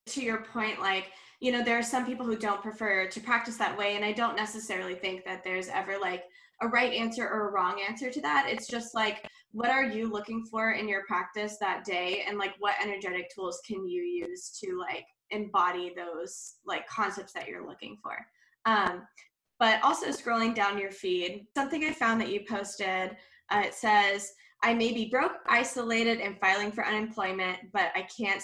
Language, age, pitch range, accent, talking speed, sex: English, 10-29, 190-230 Hz, American, 200 wpm, female